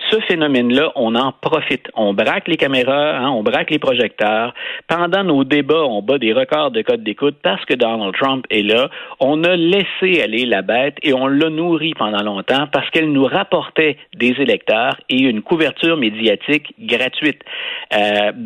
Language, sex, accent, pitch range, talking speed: French, male, Canadian, 115-165 Hz, 175 wpm